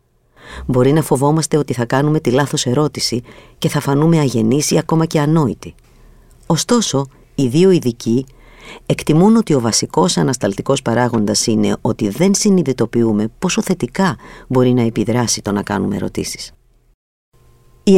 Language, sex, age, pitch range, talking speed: Greek, female, 50-69, 115-160 Hz, 135 wpm